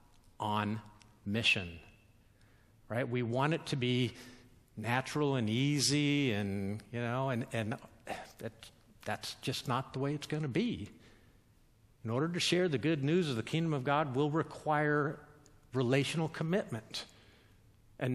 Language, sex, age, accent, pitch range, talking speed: English, male, 50-69, American, 110-145 Hz, 140 wpm